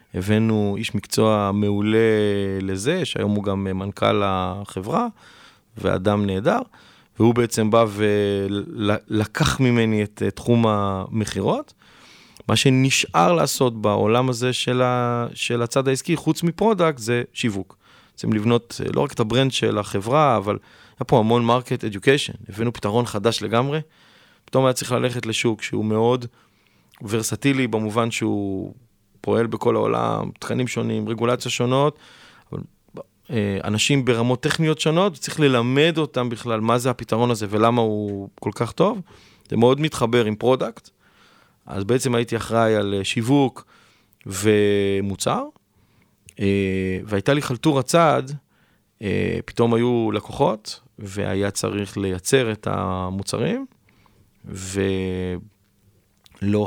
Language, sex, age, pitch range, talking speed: Hebrew, male, 30-49, 100-125 Hz, 115 wpm